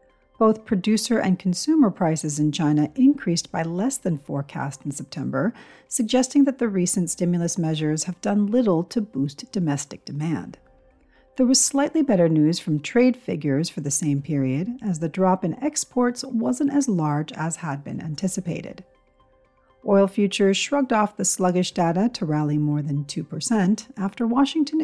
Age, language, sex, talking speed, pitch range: 40-59, English, female, 155 wpm, 150-225 Hz